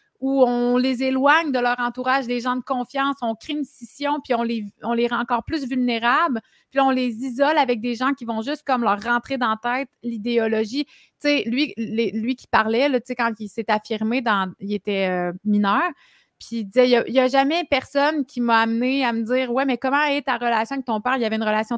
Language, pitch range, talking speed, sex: French, 220-265 Hz, 240 wpm, female